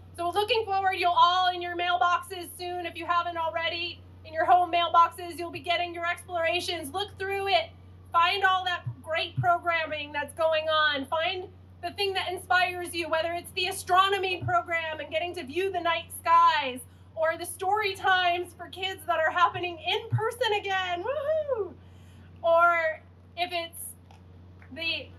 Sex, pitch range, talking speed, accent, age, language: female, 295-360 Hz, 160 wpm, American, 20-39, English